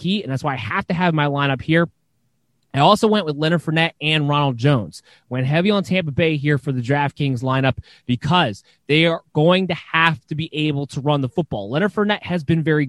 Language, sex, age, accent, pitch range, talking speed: English, male, 20-39, American, 140-175 Hz, 225 wpm